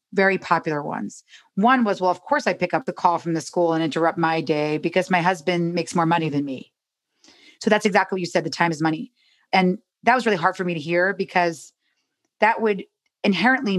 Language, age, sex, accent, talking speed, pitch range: English, 30-49, female, American, 220 wpm, 165-195 Hz